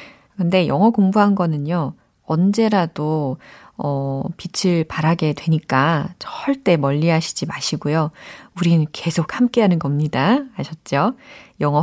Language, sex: Korean, female